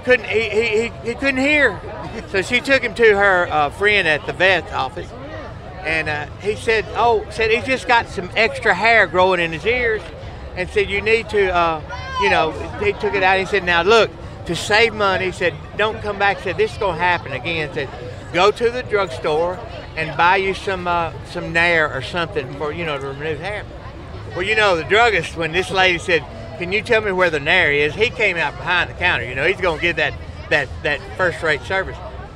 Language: English